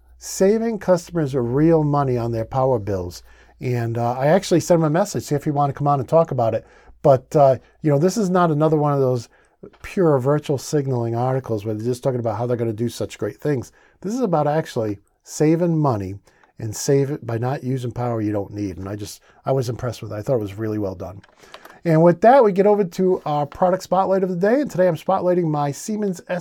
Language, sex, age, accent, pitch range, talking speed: English, male, 50-69, American, 120-170 Hz, 240 wpm